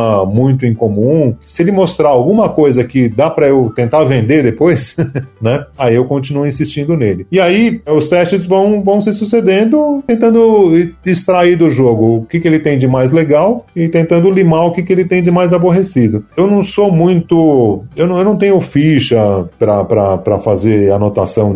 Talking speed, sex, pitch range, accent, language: 180 wpm, male, 115-170 Hz, Brazilian, Portuguese